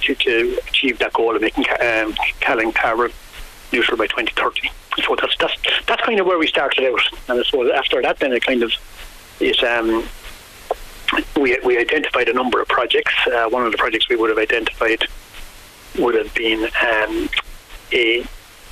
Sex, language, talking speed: male, English, 175 wpm